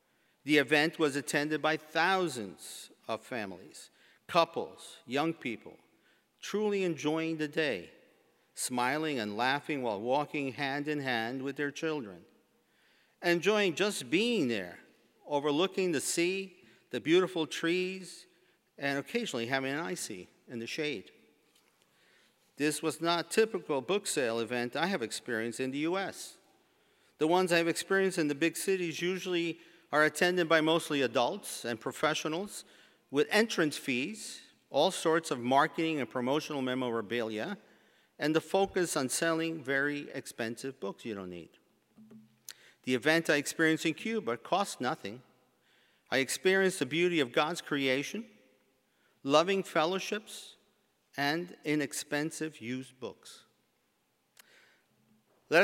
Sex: male